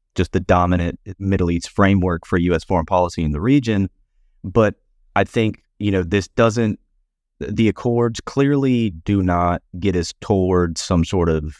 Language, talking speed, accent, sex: English, 160 wpm, American, male